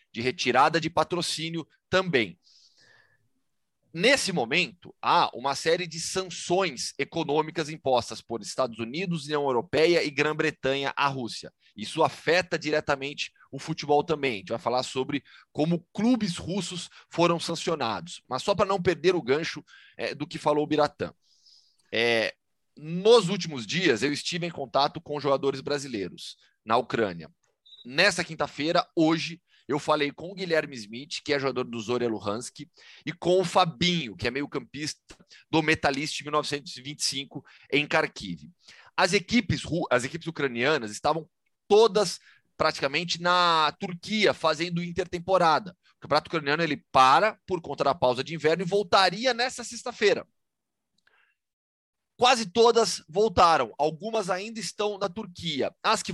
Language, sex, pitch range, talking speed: Portuguese, male, 140-180 Hz, 135 wpm